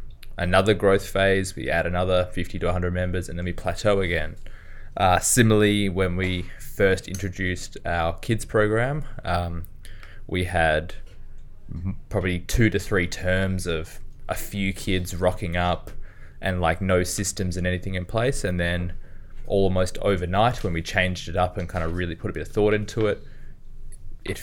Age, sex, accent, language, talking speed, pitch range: 20-39, male, Australian, English, 165 wpm, 85-100 Hz